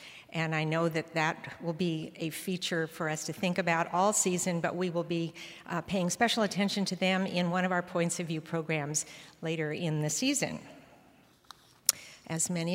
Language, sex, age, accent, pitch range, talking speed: English, female, 60-79, American, 160-185 Hz, 190 wpm